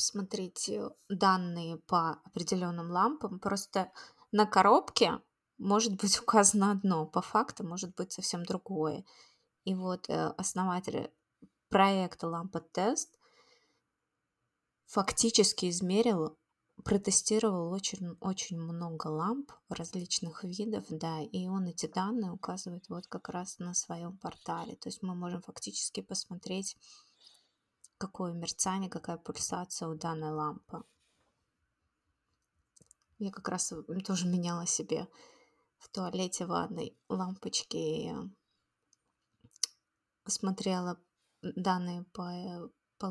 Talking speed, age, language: 100 wpm, 20-39, Russian